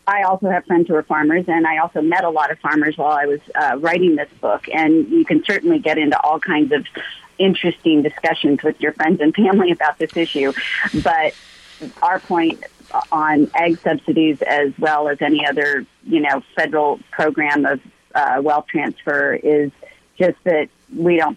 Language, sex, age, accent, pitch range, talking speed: English, female, 40-59, American, 145-175 Hz, 185 wpm